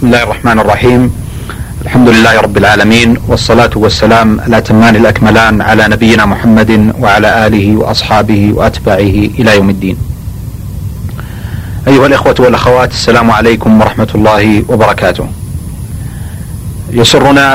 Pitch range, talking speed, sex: 110-125 Hz, 105 wpm, male